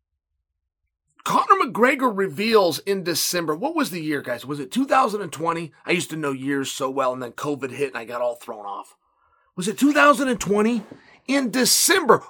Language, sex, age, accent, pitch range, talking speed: English, male, 30-49, American, 180-295 Hz, 170 wpm